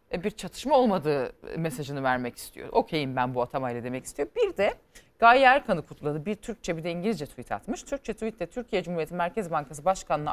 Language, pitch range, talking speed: Turkish, 155-215 Hz, 180 wpm